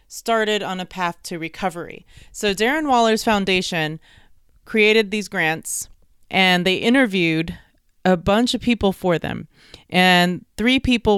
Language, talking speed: English, 135 wpm